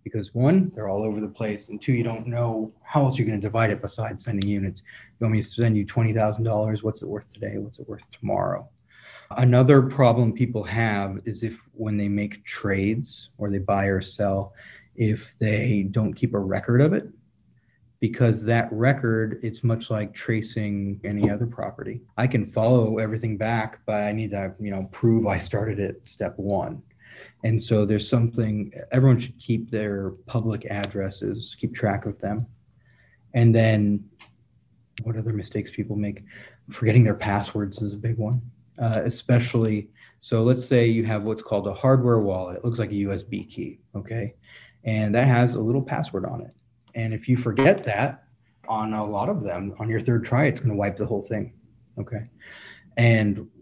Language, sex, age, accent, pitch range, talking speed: English, male, 30-49, American, 105-120 Hz, 185 wpm